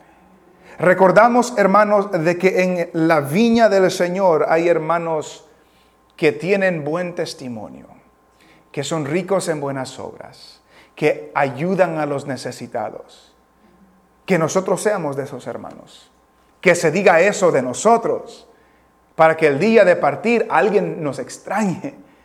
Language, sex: English, male